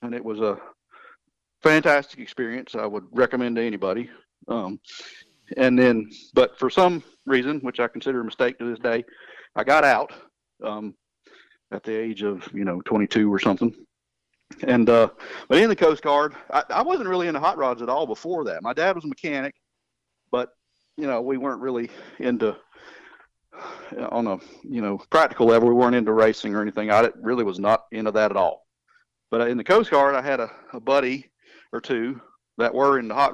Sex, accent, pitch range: male, American, 110-135 Hz